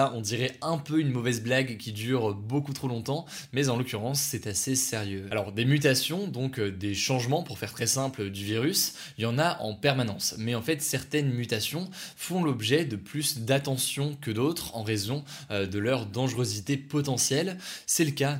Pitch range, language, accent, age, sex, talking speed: 115-145 Hz, French, French, 20-39, male, 185 wpm